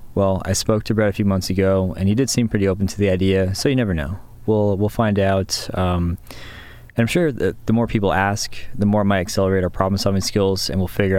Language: English